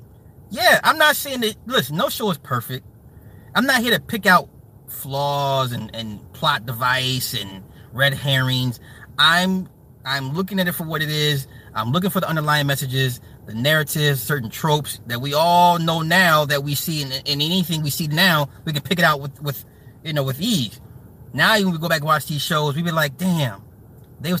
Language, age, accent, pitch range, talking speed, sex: English, 30-49, American, 130-180 Hz, 205 wpm, male